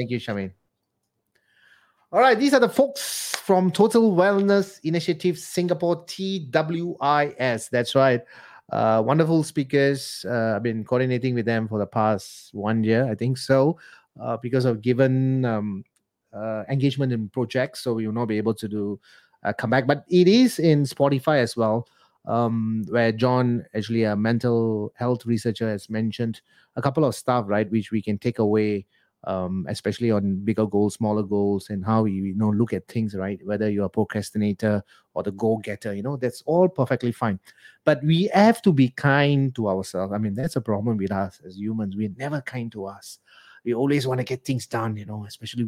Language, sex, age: English, male, 30-49